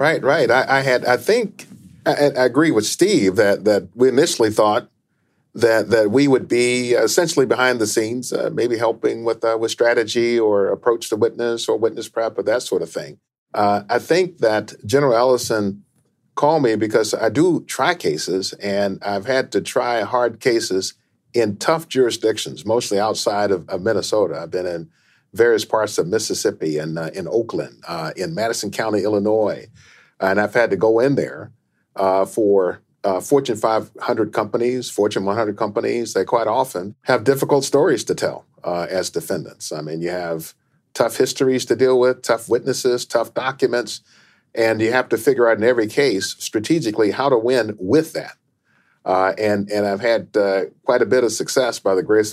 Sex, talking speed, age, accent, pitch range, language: male, 180 wpm, 50-69, American, 100-130 Hz, English